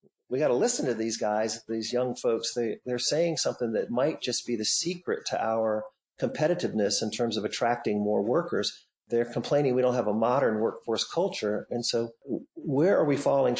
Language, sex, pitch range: English, male, 115-140 Hz